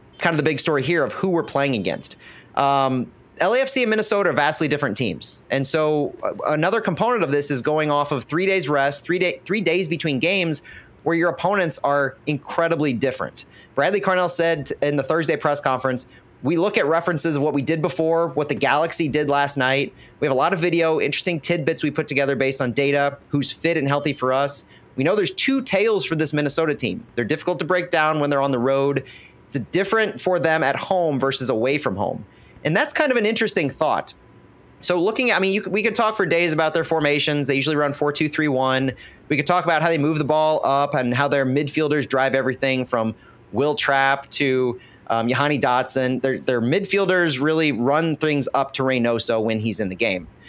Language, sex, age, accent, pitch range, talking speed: English, male, 30-49, American, 135-170 Hz, 215 wpm